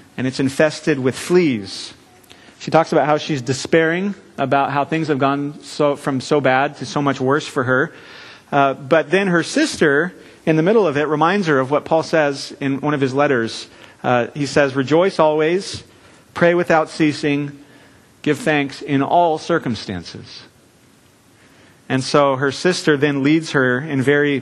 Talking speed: 170 wpm